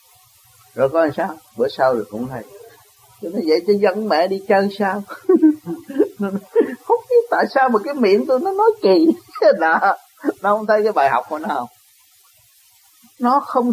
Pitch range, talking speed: 155-250 Hz, 175 wpm